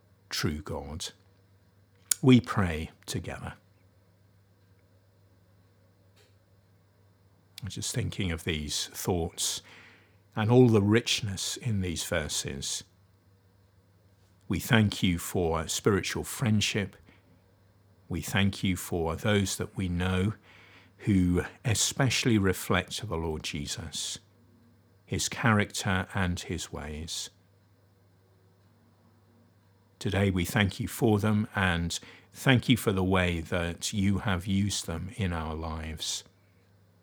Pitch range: 95-105 Hz